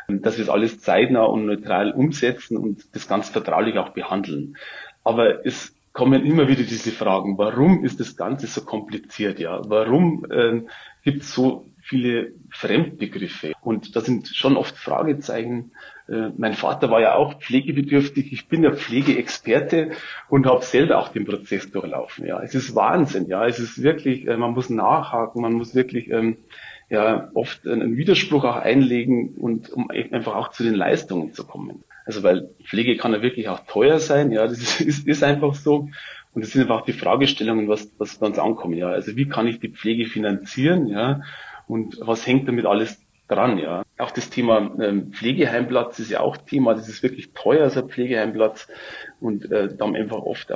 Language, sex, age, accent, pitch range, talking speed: German, male, 30-49, German, 110-135 Hz, 180 wpm